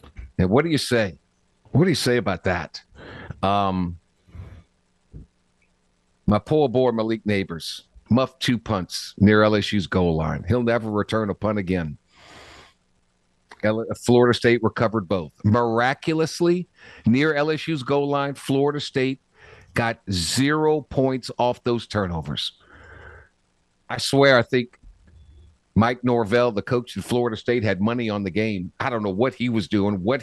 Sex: male